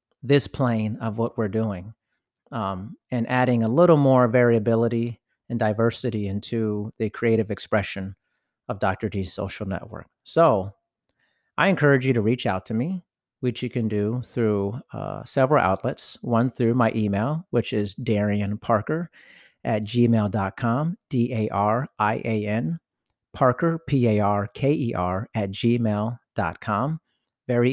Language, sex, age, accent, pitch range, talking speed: English, male, 40-59, American, 105-130 Hz, 120 wpm